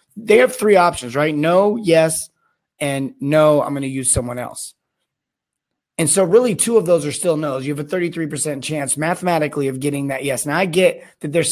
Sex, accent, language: male, American, English